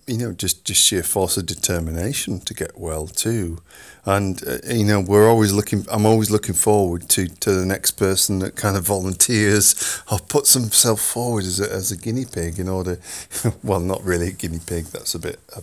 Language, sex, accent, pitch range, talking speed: English, male, British, 85-105 Hz, 205 wpm